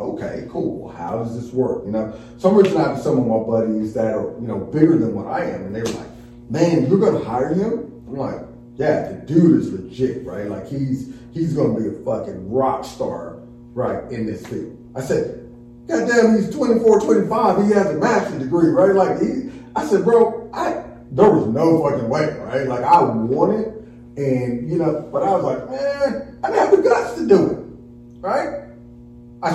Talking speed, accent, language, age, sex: 205 wpm, American, English, 30-49, male